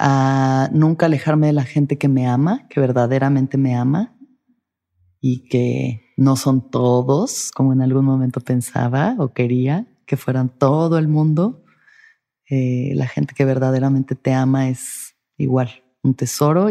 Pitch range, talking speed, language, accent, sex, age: 130-150 Hz, 145 wpm, Spanish, Mexican, female, 30-49